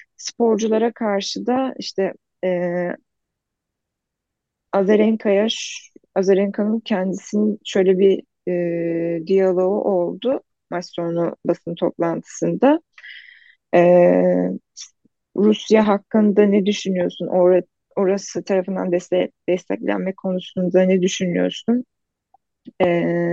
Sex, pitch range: female, 180-225 Hz